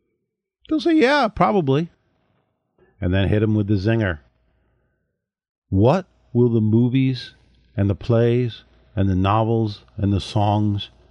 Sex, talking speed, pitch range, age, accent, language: male, 135 wpm, 110-150 Hz, 50-69, American, English